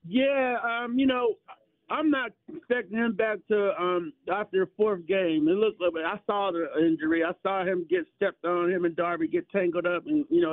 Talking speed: 220 wpm